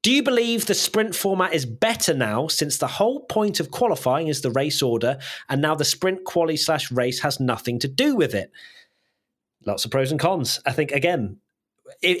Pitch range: 125-165 Hz